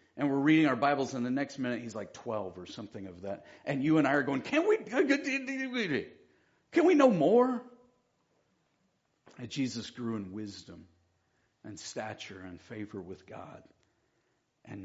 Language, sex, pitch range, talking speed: English, male, 125-170 Hz, 160 wpm